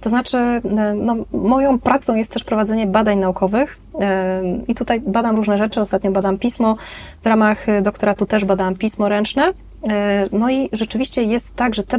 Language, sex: Polish, female